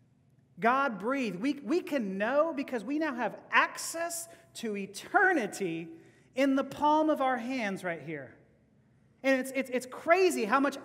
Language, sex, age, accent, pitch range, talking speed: English, male, 40-59, American, 190-280 Hz, 155 wpm